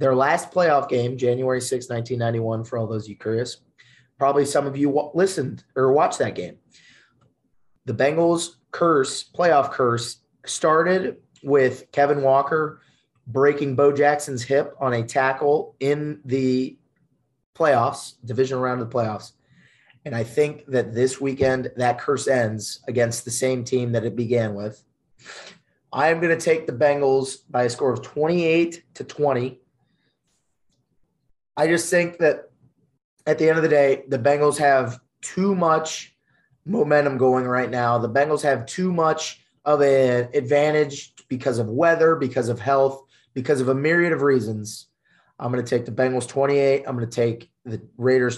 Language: English